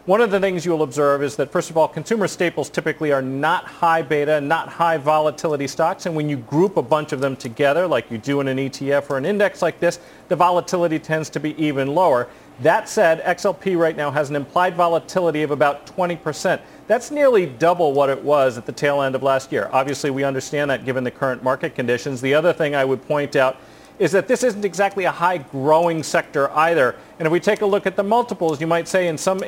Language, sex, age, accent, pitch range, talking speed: English, male, 40-59, American, 140-175 Hz, 235 wpm